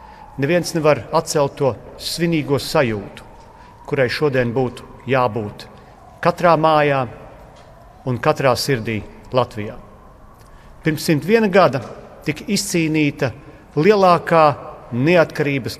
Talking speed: 85 wpm